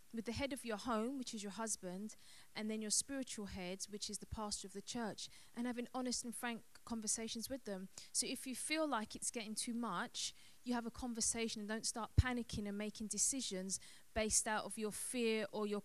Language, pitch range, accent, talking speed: English, 200-235 Hz, British, 215 wpm